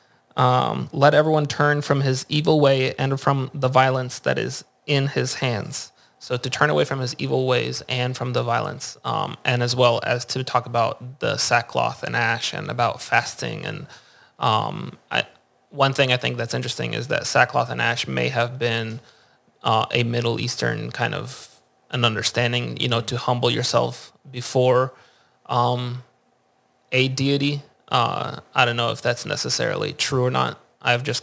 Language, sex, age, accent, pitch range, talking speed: English, male, 20-39, American, 120-130 Hz, 175 wpm